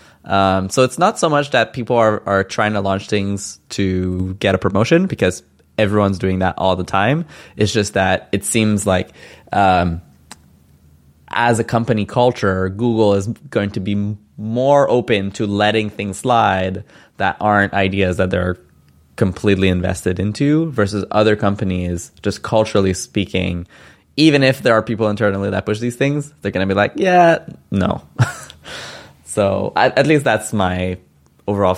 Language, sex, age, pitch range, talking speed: English, male, 20-39, 95-120 Hz, 160 wpm